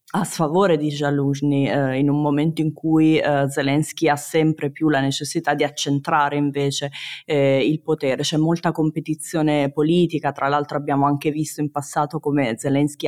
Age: 20-39